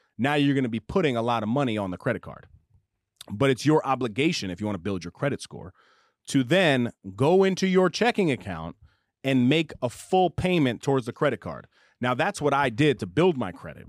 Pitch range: 115-160 Hz